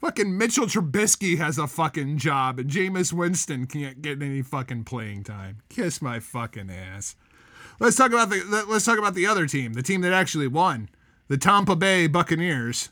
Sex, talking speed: male, 180 wpm